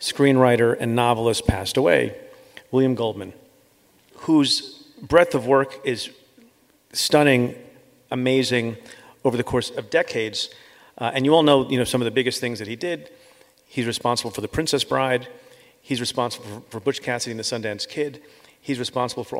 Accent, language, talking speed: American, English, 160 wpm